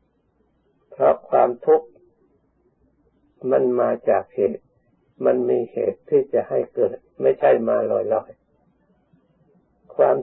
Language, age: Thai, 60-79